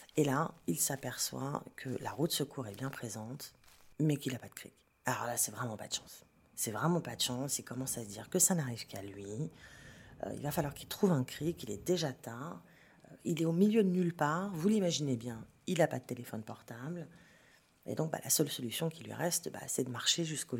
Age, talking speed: 40-59, 240 wpm